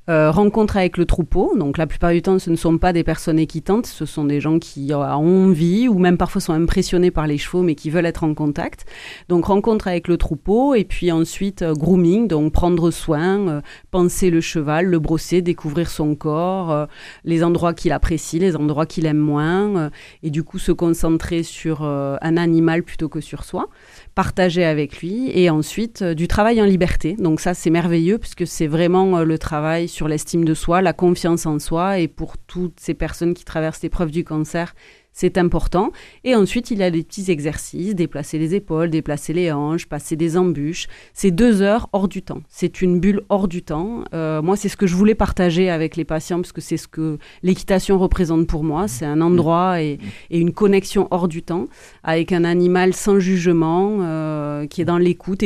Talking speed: 210 wpm